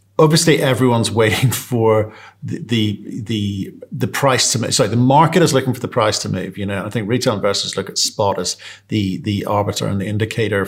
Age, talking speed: 40-59, 215 wpm